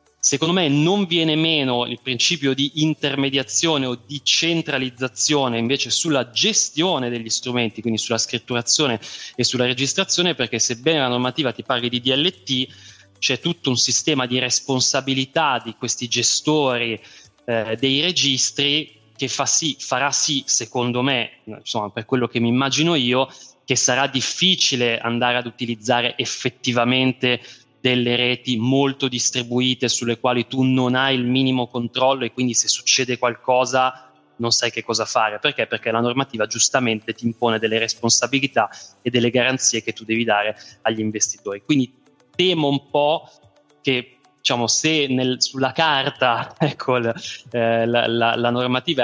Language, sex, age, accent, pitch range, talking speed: Italian, male, 30-49, native, 120-135 Hz, 145 wpm